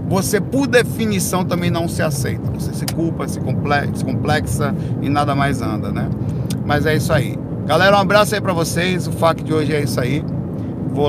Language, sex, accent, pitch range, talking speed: Portuguese, male, Brazilian, 135-165 Hz, 190 wpm